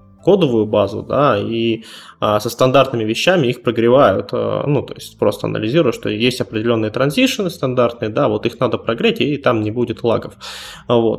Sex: male